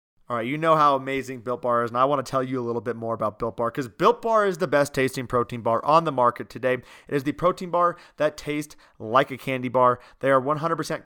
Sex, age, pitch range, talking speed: male, 30-49, 130-155 Hz, 265 wpm